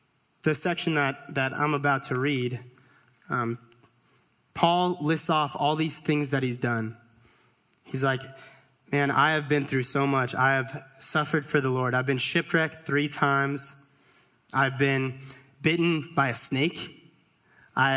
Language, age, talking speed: English, 20-39, 150 wpm